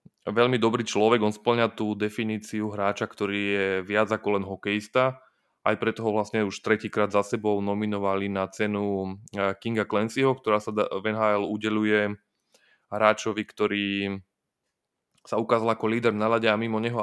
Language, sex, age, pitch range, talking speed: Slovak, male, 20-39, 100-110 Hz, 150 wpm